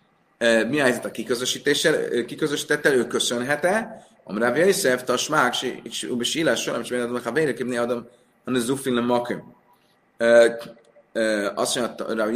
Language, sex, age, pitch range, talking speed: Hungarian, male, 30-49, 115-150 Hz, 160 wpm